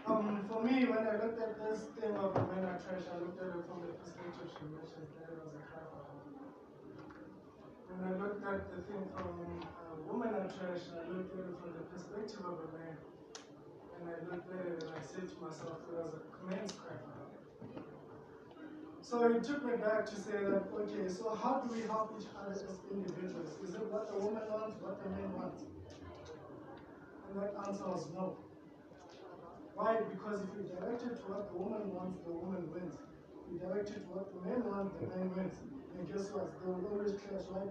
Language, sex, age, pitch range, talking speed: English, male, 20-39, 175-210 Hz, 205 wpm